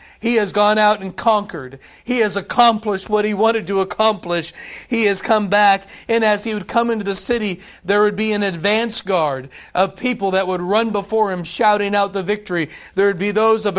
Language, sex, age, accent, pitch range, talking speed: English, male, 40-59, American, 190-225 Hz, 210 wpm